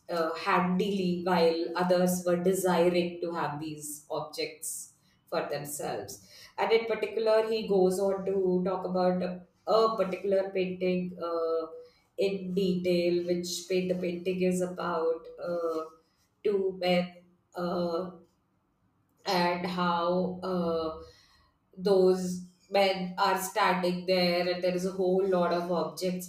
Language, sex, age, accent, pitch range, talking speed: English, female, 20-39, Indian, 170-185 Hz, 120 wpm